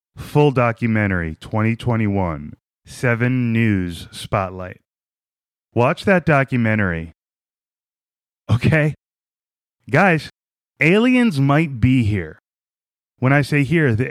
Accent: American